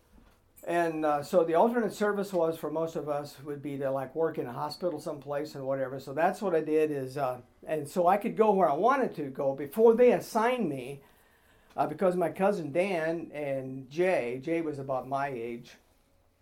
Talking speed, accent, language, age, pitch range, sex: 200 wpm, American, English, 50-69, 140-175 Hz, male